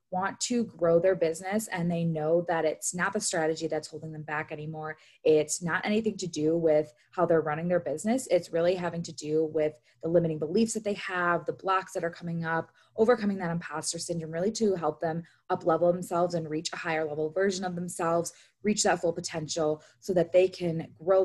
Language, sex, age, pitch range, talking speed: English, female, 20-39, 160-185 Hz, 210 wpm